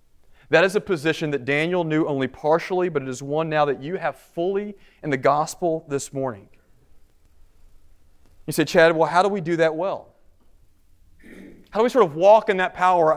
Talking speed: 190 wpm